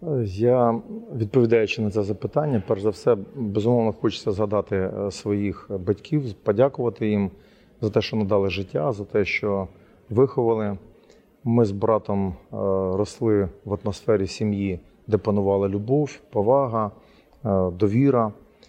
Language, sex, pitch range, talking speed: Ukrainian, male, 100-115 Hz, 115 wpm